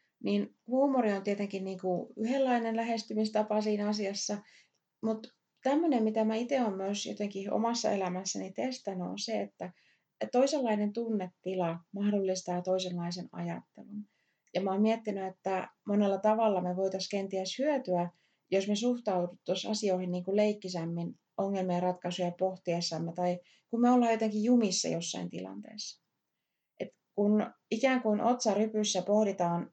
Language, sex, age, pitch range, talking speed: Finnish, female, 30-49, 180-220 Hz, 125 wpm